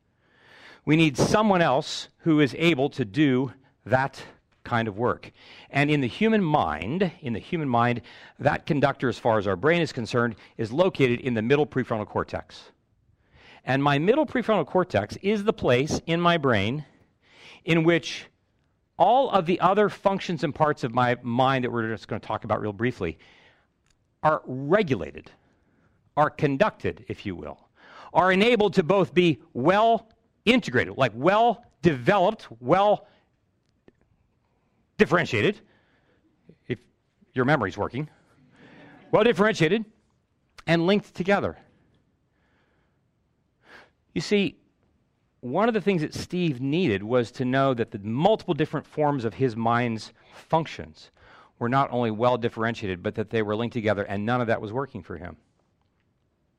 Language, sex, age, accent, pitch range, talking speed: English, male, 50-69, American, 120-175 Hz, 140 wpm